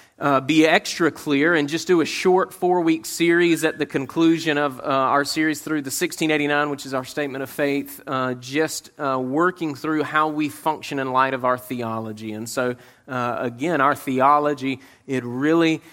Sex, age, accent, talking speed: male, 30-49, American, 180 wpm